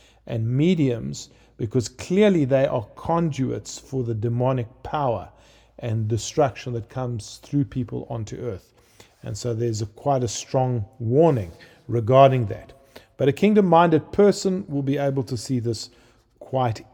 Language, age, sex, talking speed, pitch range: English, 50-69, male, 140 wpm, 120-155 Hz